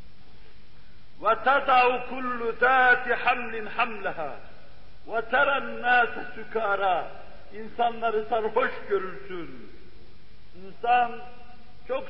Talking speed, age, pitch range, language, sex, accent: 60 wpm, 50-69, 215-245 Hz, Turkish, male, native